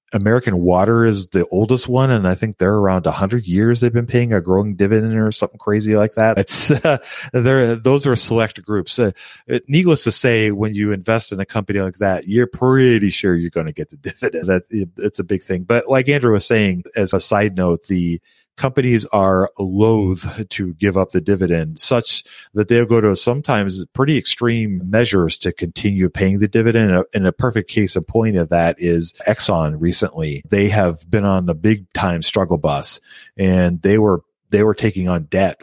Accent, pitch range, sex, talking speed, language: American, 90-110 Hz, male, 205 wpm, English